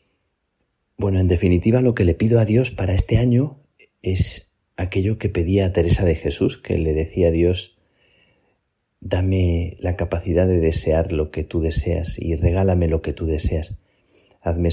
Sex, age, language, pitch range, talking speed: male, 40-59, Spanish, 80-95 Hz, 165 wpm